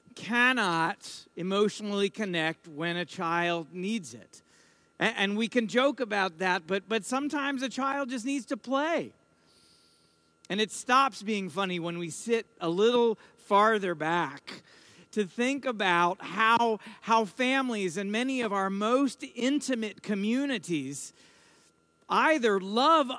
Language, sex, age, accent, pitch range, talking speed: English, male, 50-69, American, 180-245 Hz, 130 wpm